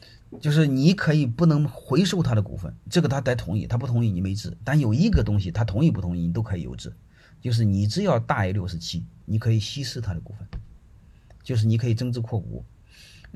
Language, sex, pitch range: Chinese, male, 95-120 Hz